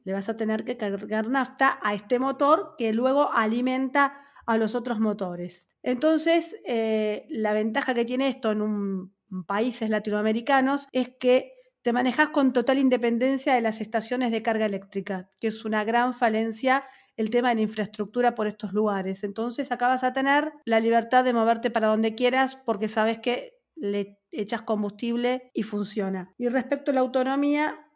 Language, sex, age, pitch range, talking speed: Spanish, female, 40-59, 215-260 Hz, 170 wpm